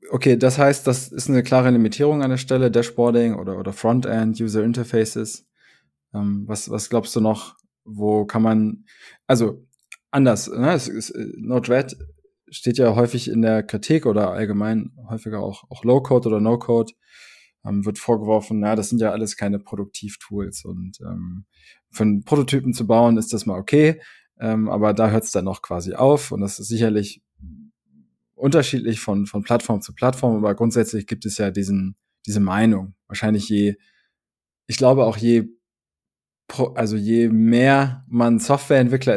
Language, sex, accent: German, male, German